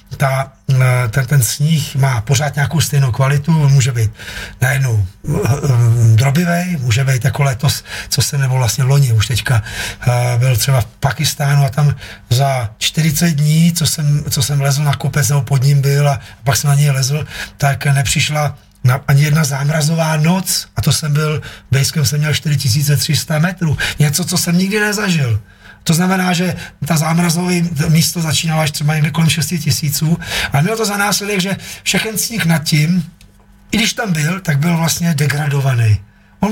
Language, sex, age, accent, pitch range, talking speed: Czech, male, 30-49, native, 130-165 Hz, 165 wpm